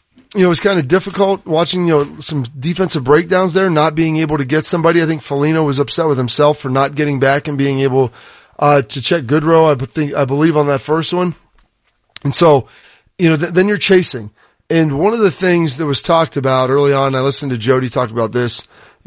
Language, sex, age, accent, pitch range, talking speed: English, male, 30-49, American, 140-170 Hz, 230 wpm